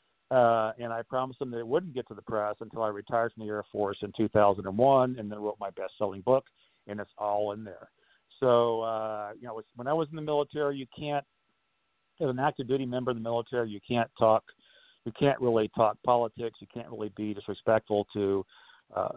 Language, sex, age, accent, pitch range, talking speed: English, male, 50-69, American, 105-130 Hz, 215 wpm